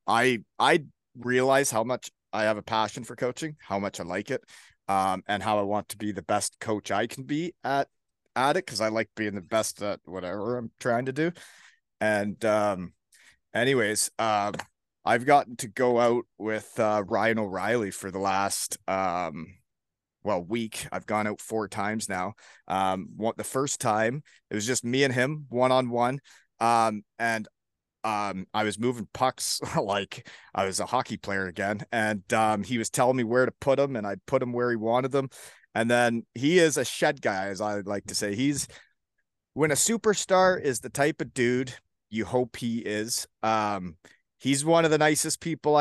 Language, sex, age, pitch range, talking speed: English, male, 30-49, 105-130 Hz, 195 wpm